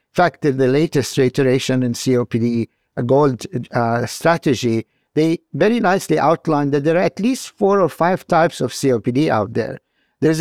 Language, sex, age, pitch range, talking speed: English, male, 50-69, 125-155 Hz, 175 wpm